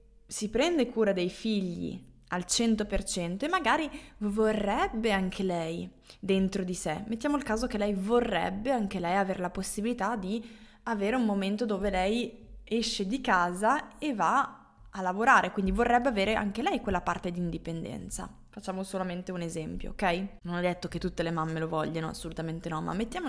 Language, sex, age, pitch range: Italian, female, 20-39, 175-235 Hz